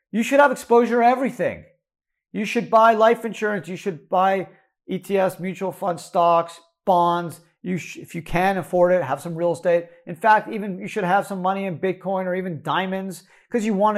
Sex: male